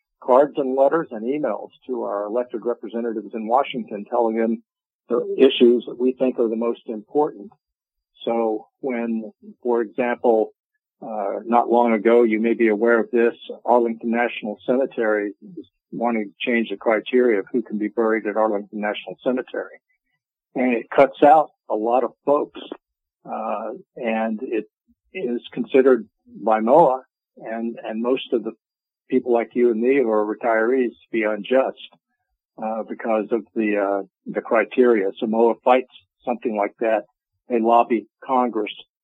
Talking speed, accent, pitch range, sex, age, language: 150 wpm, American, 110-125 Hz, male, 50-69, English